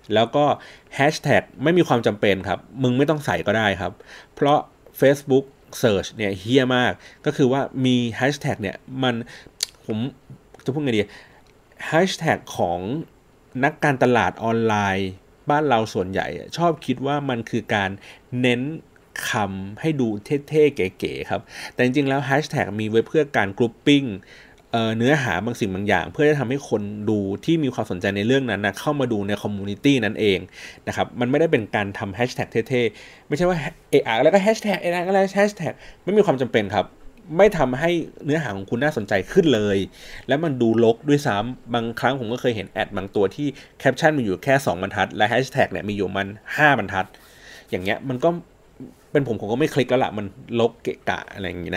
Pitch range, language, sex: 105-145 Hz, Thai, male